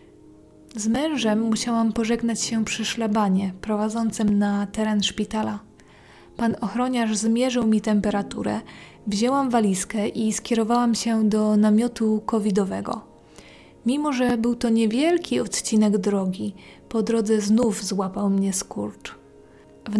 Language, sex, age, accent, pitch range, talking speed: Polish, female, 20-39, native, 210-240 Hz, 115 wpm